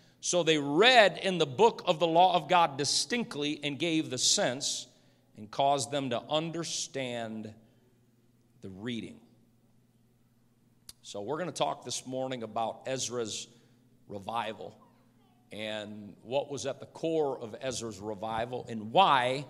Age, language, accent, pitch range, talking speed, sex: 50-69, English, American, 120-160 Hz, 135 wpm, male